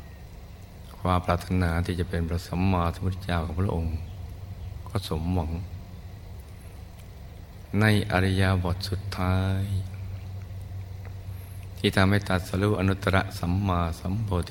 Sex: male